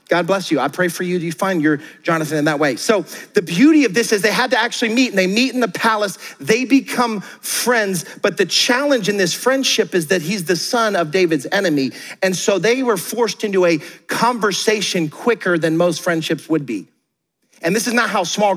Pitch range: 160-205 Hz